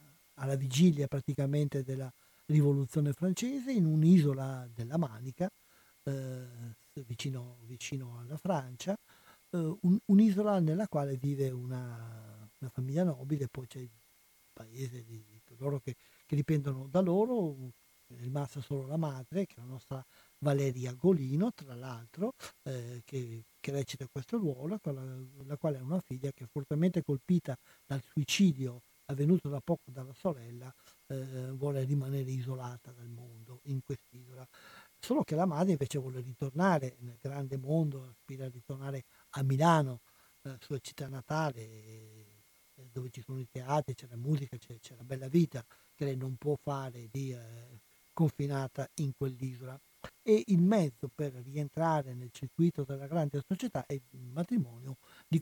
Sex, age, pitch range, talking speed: male, 50-69, 125-155 Hz, 150 wpm